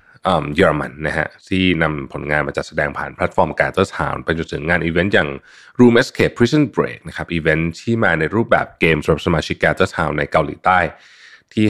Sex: male